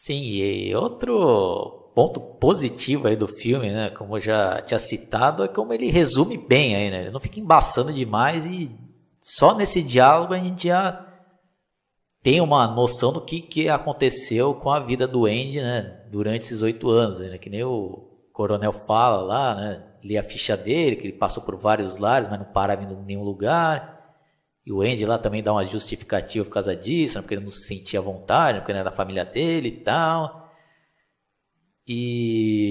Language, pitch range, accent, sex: Portuguese, 105-160 Hz, Brazilian, male